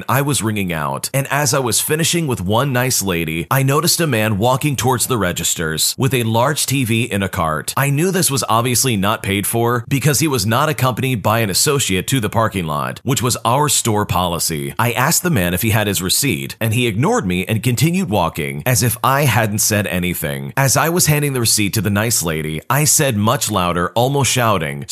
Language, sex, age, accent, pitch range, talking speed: English, male, 30-49, American, 100-135 Hz, 220 wpm